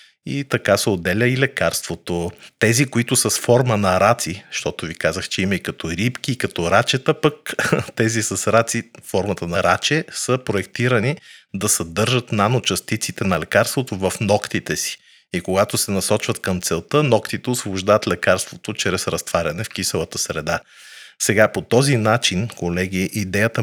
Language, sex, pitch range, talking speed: Bulgarian, male, 95-115 Hz, 155 wpm